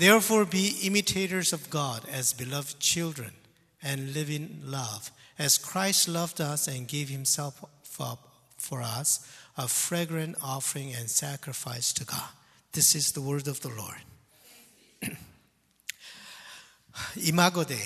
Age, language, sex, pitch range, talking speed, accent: 50-69, English, male, 130-170 Hz, 130 wpm, Japanese